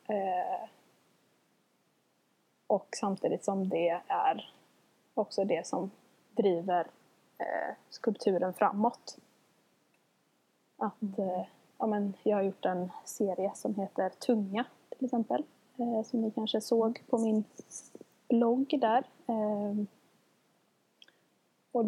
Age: 20-39